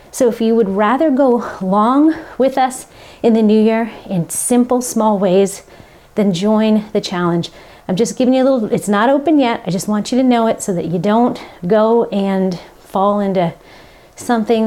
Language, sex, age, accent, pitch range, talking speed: English, female, 40-59, American, 195-245 Hz, 190 wpm